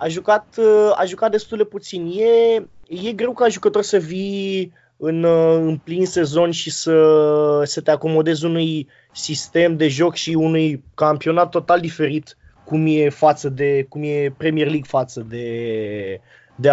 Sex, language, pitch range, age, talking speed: male, Romanian, 145-195 Hz, 20-39, 150 wpm